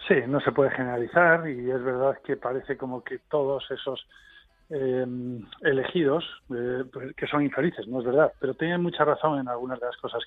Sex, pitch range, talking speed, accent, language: male, 125-160 Hz, 185 wpm, Spanish, Spanish